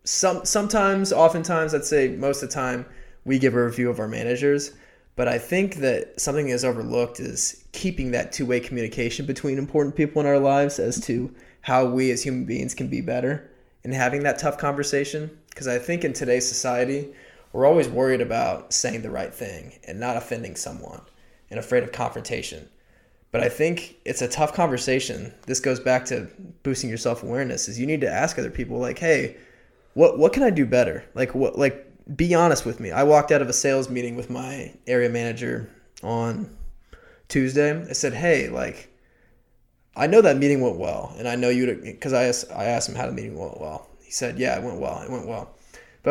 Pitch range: 125-150 Hz